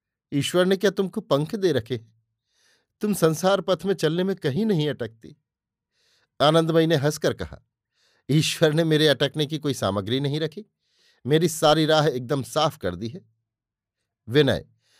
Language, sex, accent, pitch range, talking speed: Hindi, male, native, 120-160 Hz, 150 wpm